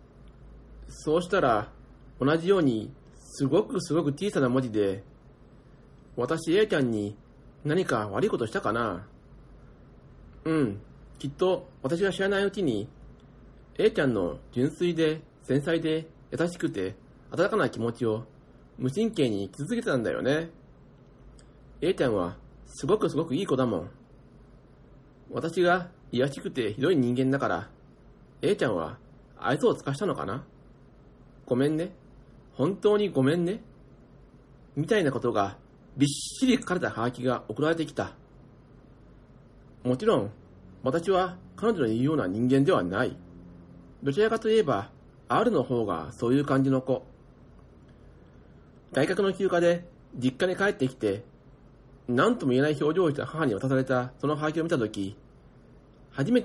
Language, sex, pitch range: Japanese, male, 125-170 Hz